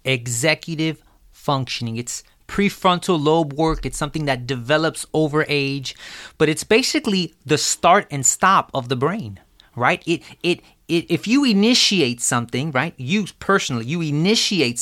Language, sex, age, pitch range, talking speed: English, male, 30-49, 130-185 Hz, 140 wpm